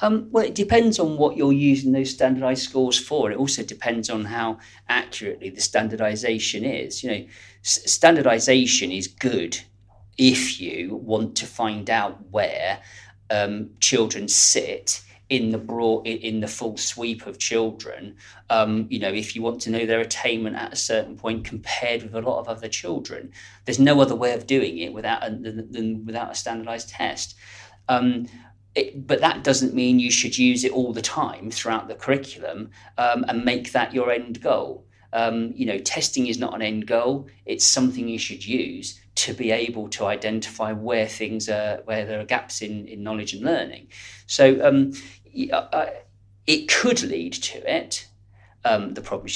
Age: 40-59